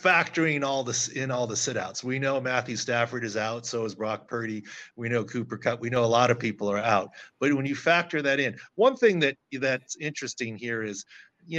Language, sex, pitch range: English, male, 120-155 Hz